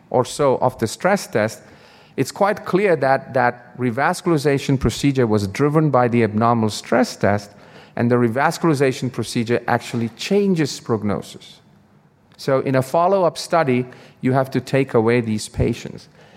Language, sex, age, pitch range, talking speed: English, male, 40-59, 105-145 Hz, 145 wpm